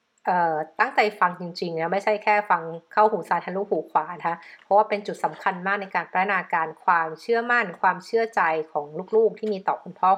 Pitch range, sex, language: 175-220 Hz, female, Thai